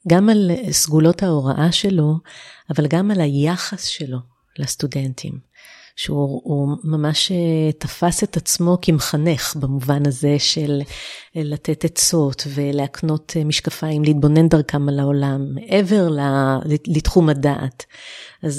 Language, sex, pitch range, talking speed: Hebrew, female, 145-180 Hz, 105 wpm